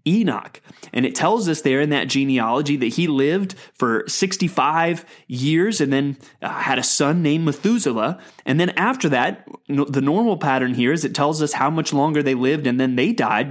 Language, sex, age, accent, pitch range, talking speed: English, male, 30-49, American, 135-190 Hz, 190 wpm